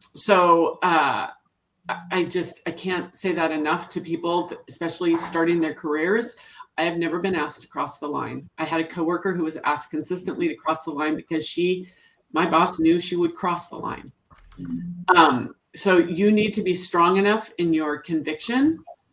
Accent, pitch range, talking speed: American, 150-180 Hz, 180 wpm